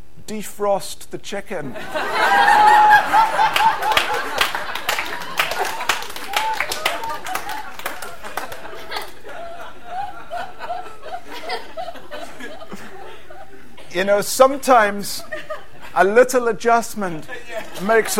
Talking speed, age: 35 wpm, 50-69